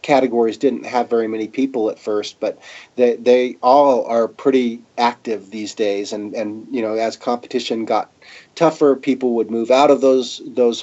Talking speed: 175 wpm